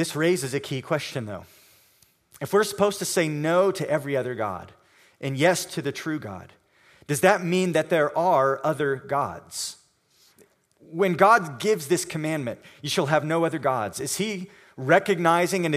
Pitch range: 125-165 Hz